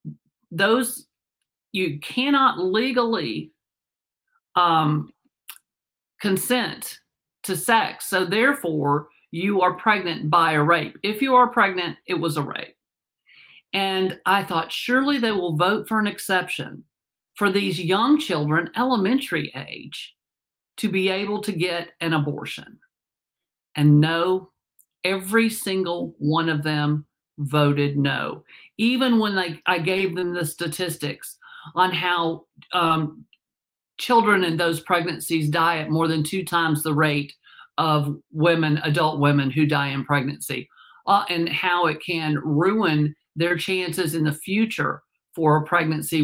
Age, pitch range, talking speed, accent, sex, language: 50-69, 155-200 Hz, 130 wpm, American, male, English